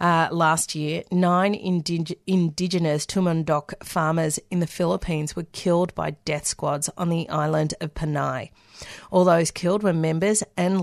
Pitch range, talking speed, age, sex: 160-185 Hz, 150 wpm, 40-59, female